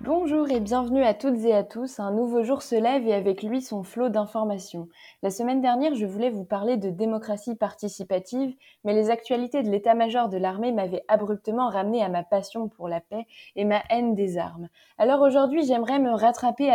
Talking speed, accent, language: 195 wpm, French, French